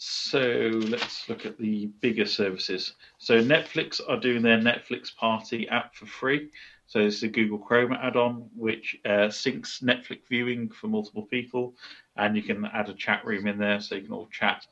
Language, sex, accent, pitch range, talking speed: English, male, British, 105-125 Hz, 185 wpm